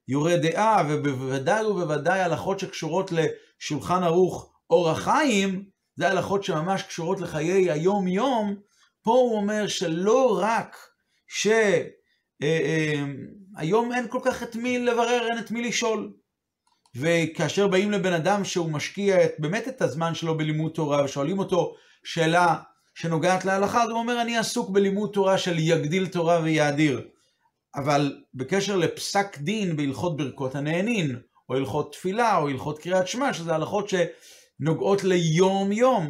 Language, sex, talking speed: Hebrew, male, 130 wpm